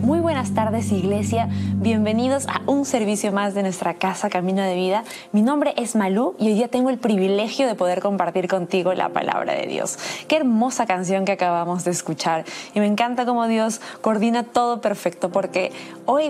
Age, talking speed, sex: 20-39, 185 wpm, female